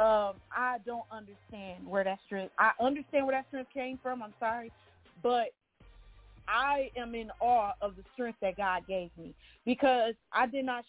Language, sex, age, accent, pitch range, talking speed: English, female, 40-59, American, 210-255 Hz, 175 wpm